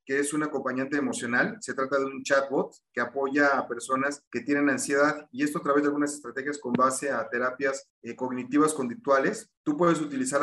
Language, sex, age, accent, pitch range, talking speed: Spanish, male, 40-59, Mexican, 130-145 Hz, 195 wpm